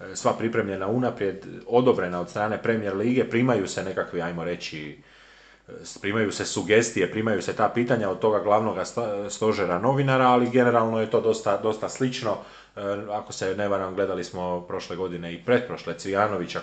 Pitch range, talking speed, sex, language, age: 95-120 Hz, 155 wpm, male, Croatian, 30-49